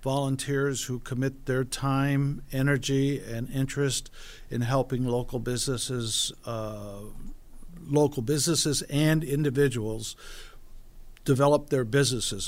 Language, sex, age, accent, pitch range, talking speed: English, male, 50-69, American, 120-140 Hz, 95 wpm